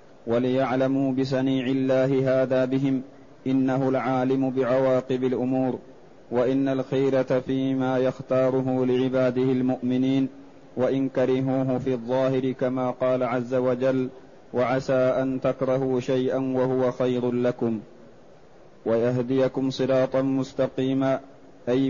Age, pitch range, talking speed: 30-49, 130-135 Hz, 95 wpm